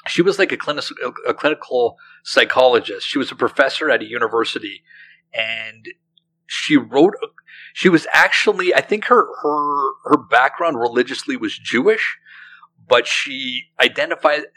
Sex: male